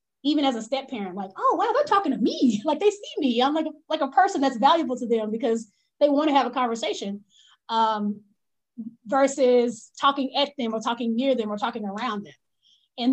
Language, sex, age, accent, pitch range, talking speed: English, female, 20-39, American, 235-295 Hz, 215 wpm